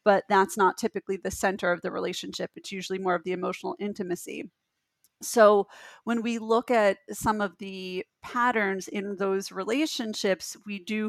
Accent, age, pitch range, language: American, 30-49, 190-225 Hz, English